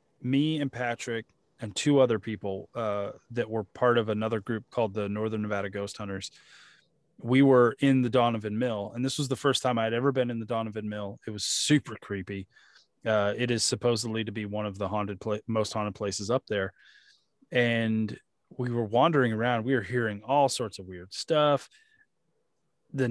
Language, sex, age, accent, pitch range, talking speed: English, male, 20-39, American, 110-140 Hz, 190 wpm